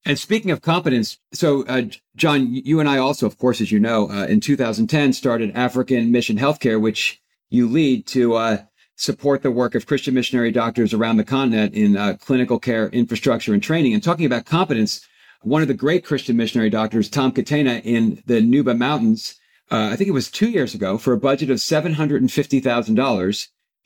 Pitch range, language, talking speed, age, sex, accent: 115-145 Hz, English, 190 wpm, 50-69, male, American